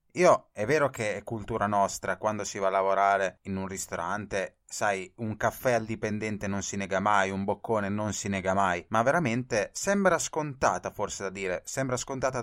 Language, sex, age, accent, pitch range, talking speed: Italian, male, 30-49, native, 100-130 Hz, 190 wpm